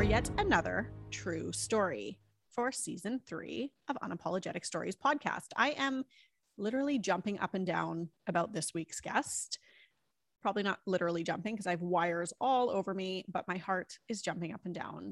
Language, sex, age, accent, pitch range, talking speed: English, female, 30-49, American, 170-220 Hz, 165 wpm